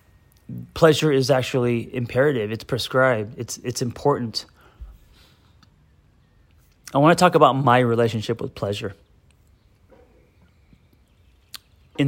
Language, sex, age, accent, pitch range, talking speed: English, male, 30-49, American, 110-135 Hz, 95 wpm